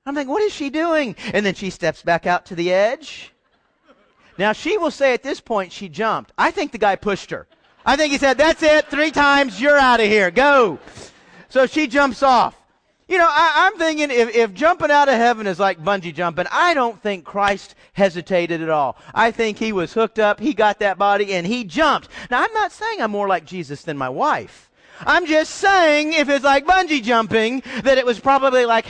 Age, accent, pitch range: 40-59, American, 200-300 Hz